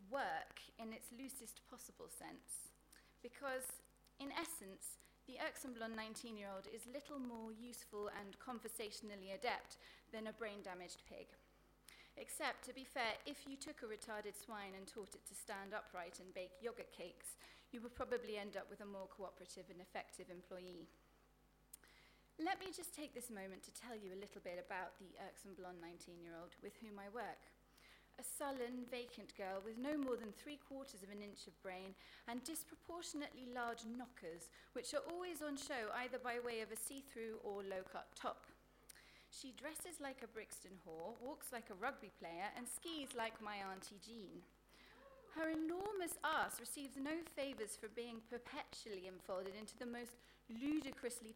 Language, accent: English, British